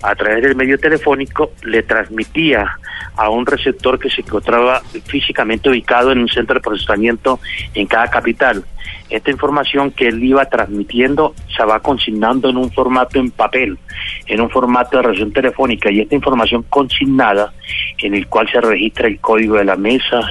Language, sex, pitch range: Spanish, male, 105-130 Hz